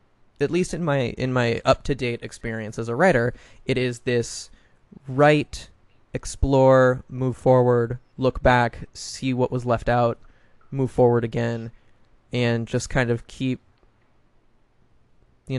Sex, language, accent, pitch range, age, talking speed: male, English, American, 115-135 Hz, 20-39, 140 wpm